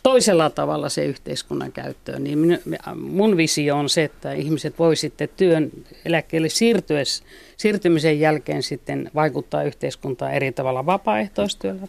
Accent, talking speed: native, 120 wpm